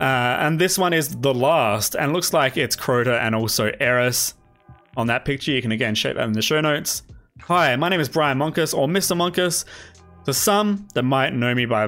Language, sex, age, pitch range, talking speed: English, male, 20-39, 120-155 Hz, 215 wpm